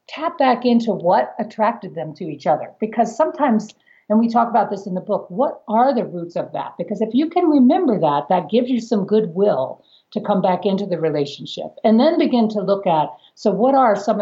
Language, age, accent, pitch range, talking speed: English, 50-69, American, 180-230 Hz, 220 wpm